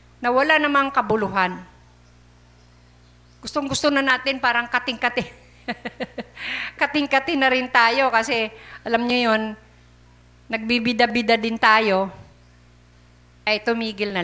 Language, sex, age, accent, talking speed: Filipino, female, 50-69, native, 95 wpm